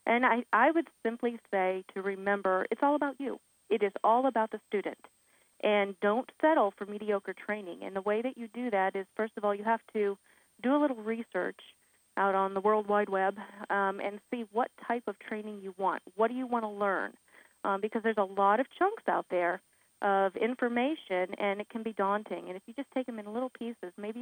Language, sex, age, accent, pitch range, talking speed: English, female, 40-59, American, 195-240 Hz, 220 wpm